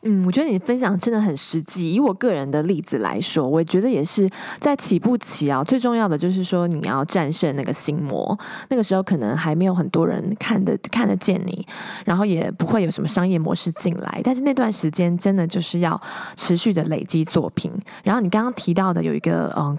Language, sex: Chinese, female